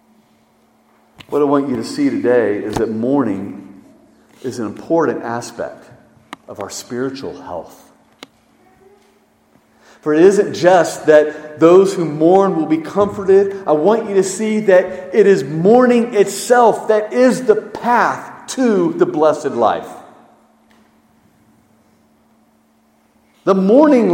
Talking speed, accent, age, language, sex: 120 wpm, American, 50-69, English, male